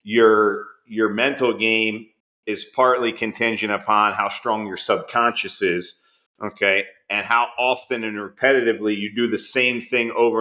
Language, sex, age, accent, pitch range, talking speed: English, male, 30-49, American, 100-115 Hz, 145 wpm